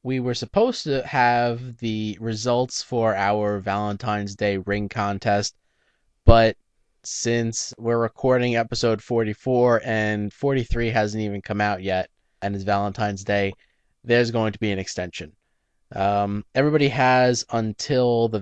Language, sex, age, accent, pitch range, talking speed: English, male, 20-39, American, 100-115 Hz, 135 wpm